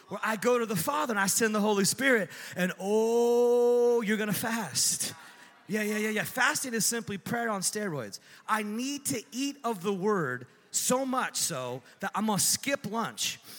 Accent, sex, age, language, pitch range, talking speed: American, male, 30-49, English, 195-250 Hz, 195 wpm